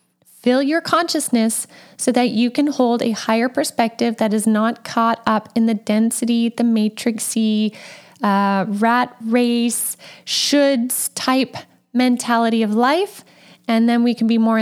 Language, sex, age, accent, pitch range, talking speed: English, female, 10-29, American, 225-275 Hz, 145 wpm